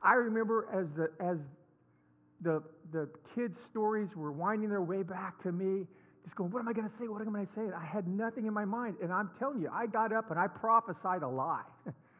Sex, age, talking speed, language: male, 50-69, 240 wpm, English